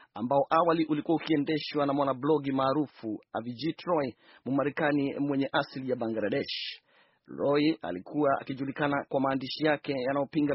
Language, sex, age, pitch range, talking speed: Swahili, male, 40-59, 130-150 Hz, 125 wpm